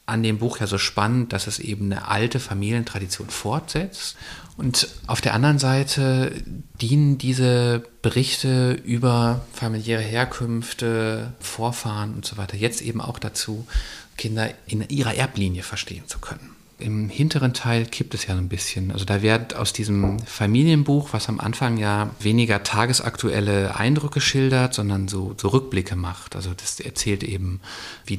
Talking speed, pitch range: 150 wpm, 95-120 Hz